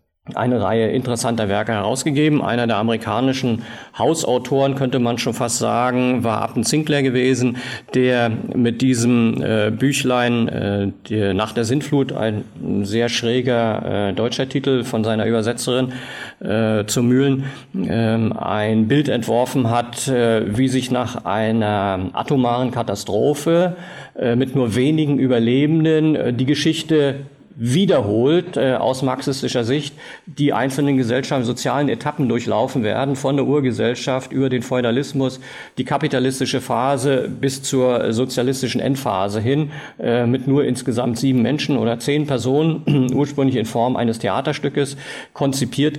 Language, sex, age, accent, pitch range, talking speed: German, male, 50-69, German, 115-135 Hz, 130 wpm